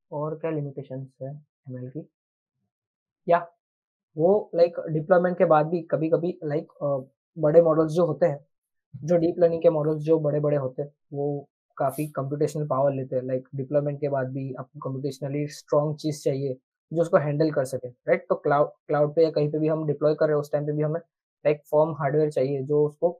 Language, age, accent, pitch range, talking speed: Hindi, 20-39, native, 145-170 Hz, 190 wpm